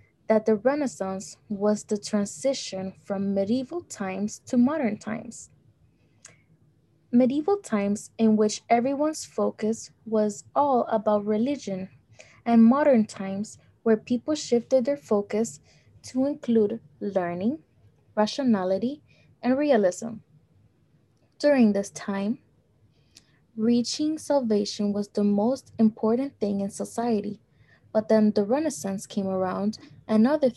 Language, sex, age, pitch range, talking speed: English, female, 20-39, 200-245 Hz, 110 wpm